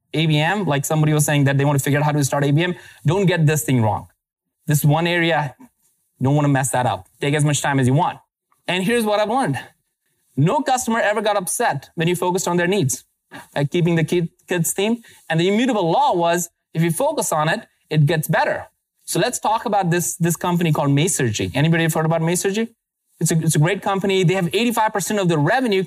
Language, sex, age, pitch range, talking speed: English, male, 20-39, 145-185 Hz, 225 wpm